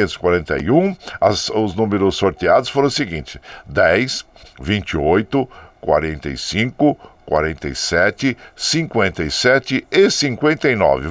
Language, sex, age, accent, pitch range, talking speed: Portuguese, male, 60-79, Brazilian, 90-140 Hz, 75 wpm